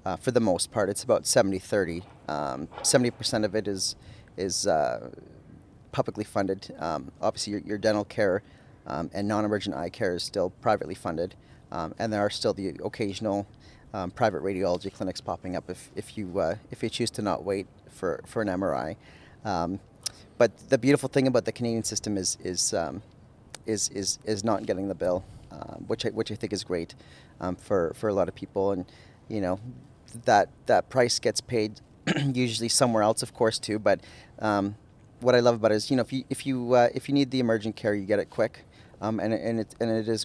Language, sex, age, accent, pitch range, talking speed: English, male, 40-59, American, 100-115 Hz, 210 wpm